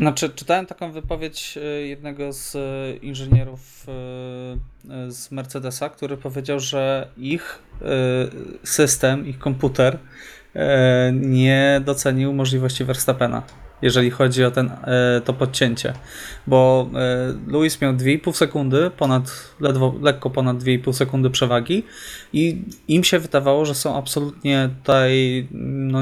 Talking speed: 105 wpm